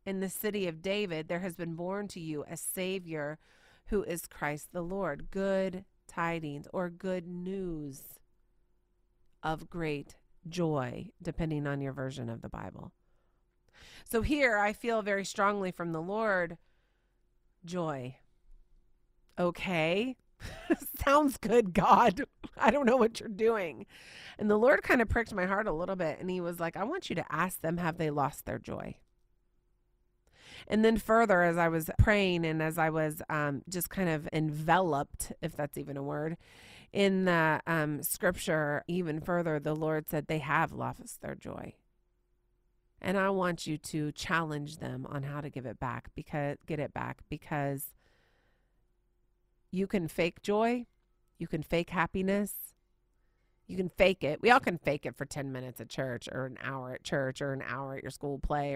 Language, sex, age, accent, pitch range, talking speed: English, female, 30-49, American, 145-190 Hz, 170 wpm